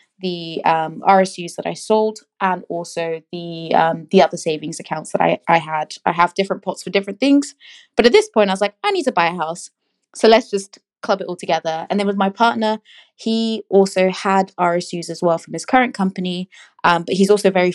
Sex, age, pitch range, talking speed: female, 20-39, 170-205 Hz, 215 wpm